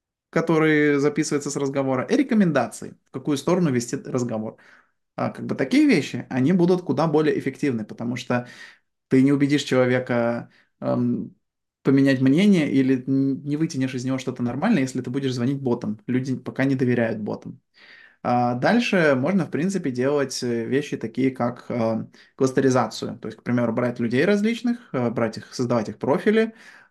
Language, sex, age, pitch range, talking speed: Ukrainian, male, 20-39, 120-145 Hz, 145 wpm